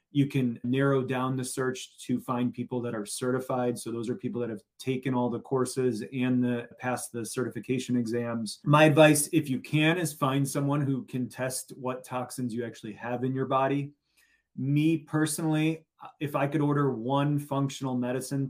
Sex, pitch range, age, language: male, 125-140 Hz, 20-39, English